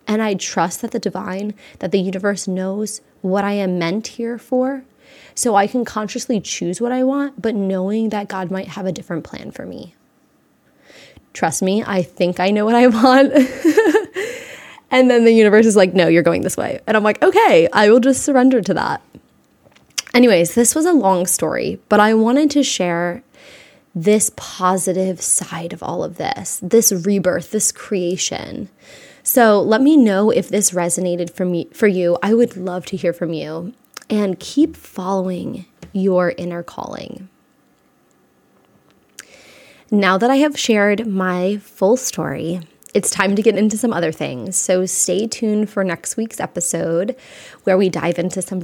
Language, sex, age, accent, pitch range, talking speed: English, female, 20-39, American, 185-235 Hz, 170 wpm